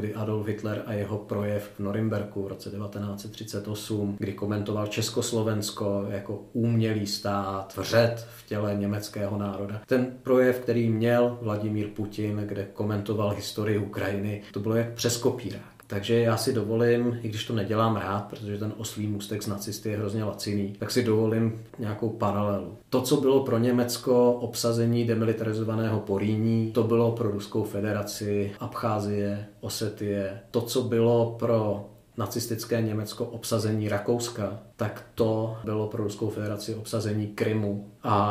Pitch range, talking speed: 105-115 Hz, 145 wpm